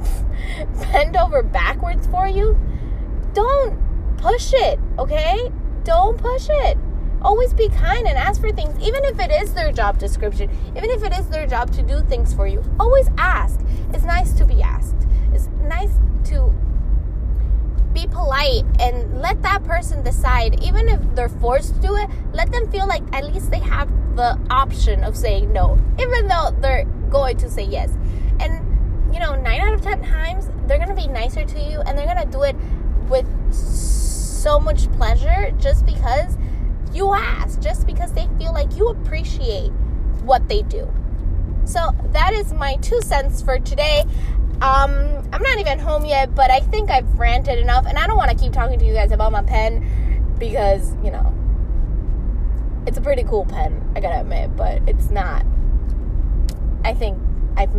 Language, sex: English, female